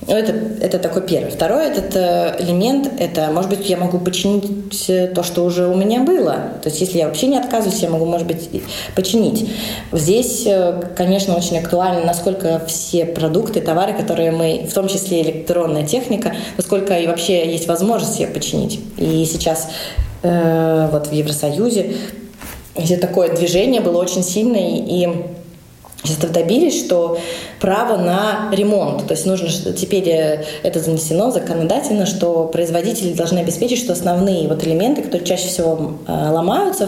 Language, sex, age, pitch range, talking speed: Russian, female, 20-39, 165-200 Hz, 155 wpm